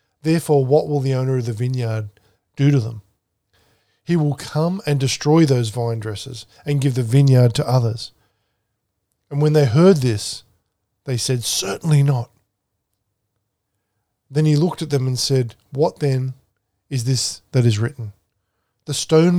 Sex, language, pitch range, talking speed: male, English, 110-145 Hz, 155 wpm